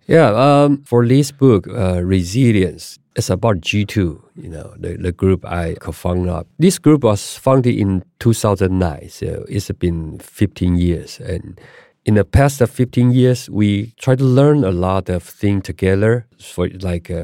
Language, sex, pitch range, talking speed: English, male, 95-125 Hz, 160 wpm